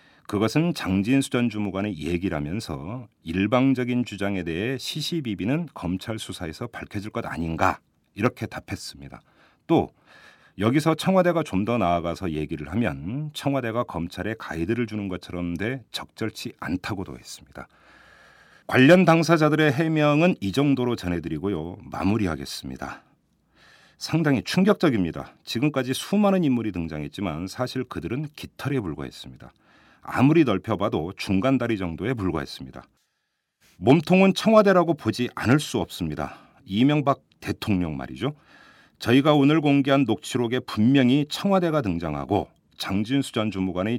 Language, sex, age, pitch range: Korean, male, 40-59, 90-140 Hz